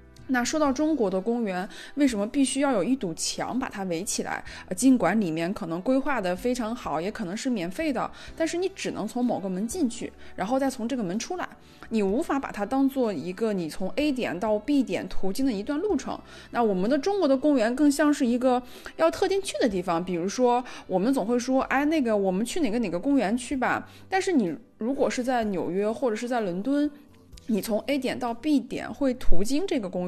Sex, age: female, 20-39